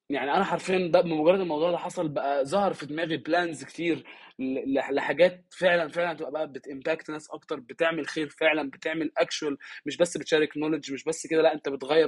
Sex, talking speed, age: male, 180 wpm, 20-39